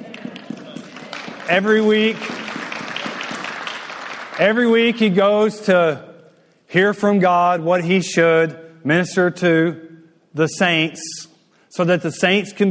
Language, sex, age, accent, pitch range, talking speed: English, male, 40-59, American, 175-225 Hz, 105 wpm